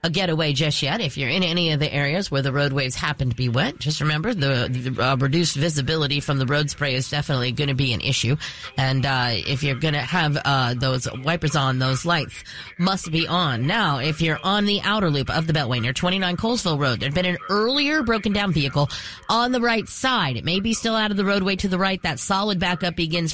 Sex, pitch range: female, 140-200 Hz